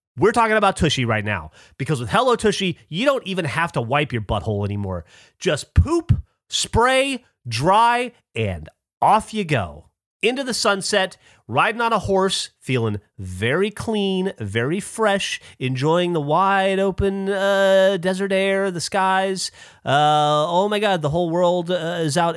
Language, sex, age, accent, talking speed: English, male, 30-49, American, 155 wpm